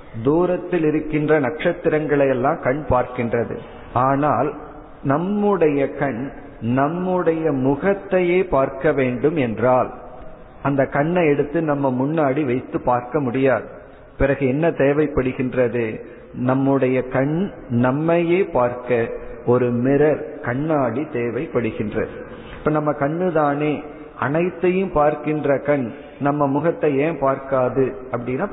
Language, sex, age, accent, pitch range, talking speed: Tamil, male, 50-69, native, 125-155 Hz, 90 wpm